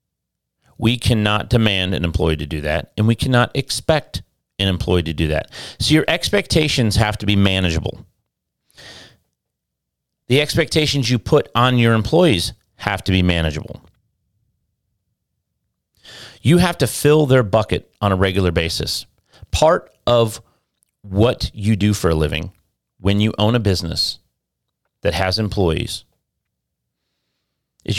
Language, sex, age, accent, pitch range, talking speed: English, male, 40-59, American, 95-120 Hz, 135 wpm